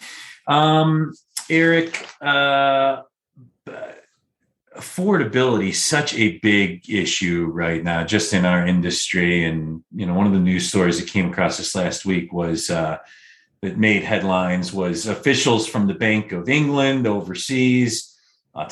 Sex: male